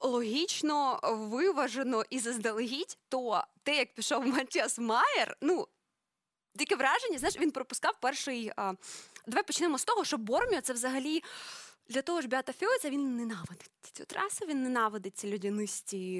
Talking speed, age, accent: 150 wpm, 20-39, native